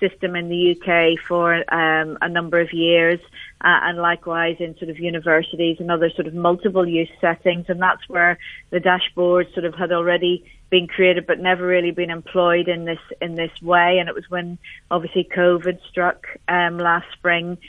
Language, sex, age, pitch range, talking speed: English, female, 30-49, 170-180 Hz, 185 wpm